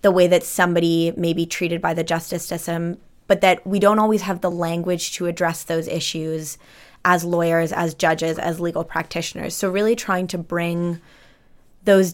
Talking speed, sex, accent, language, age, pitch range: 180 wpm, female, American, French, 20-39, 165-185 Hz